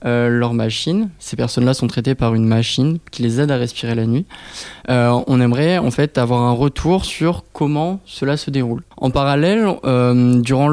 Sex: male